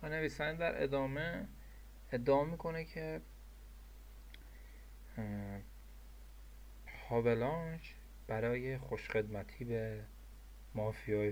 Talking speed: 60 wpm